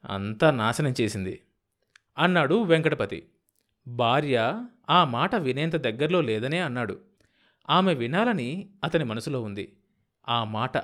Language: Telugu